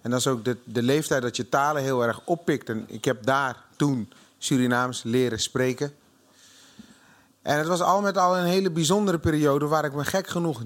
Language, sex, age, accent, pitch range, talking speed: Dutch, male, 30-49, Dutch, 125-160 Hz, 205 wpm